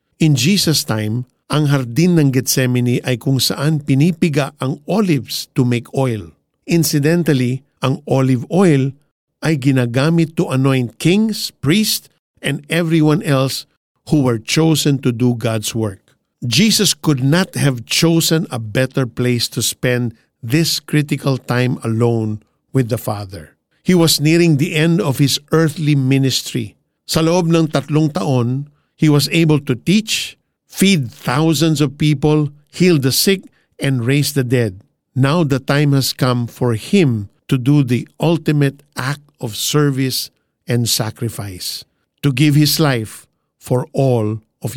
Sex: male